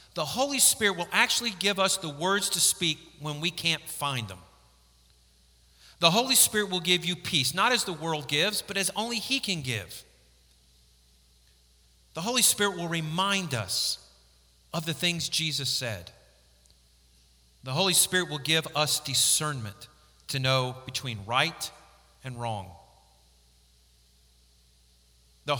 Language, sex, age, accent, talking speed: English, male, 40-59, American, 140 wpm